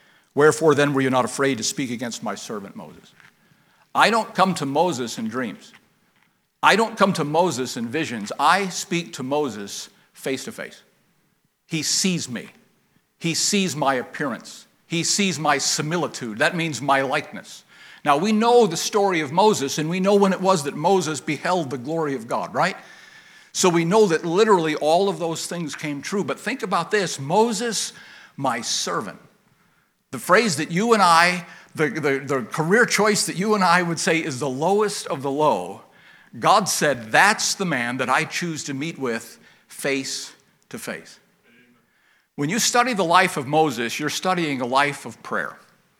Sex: male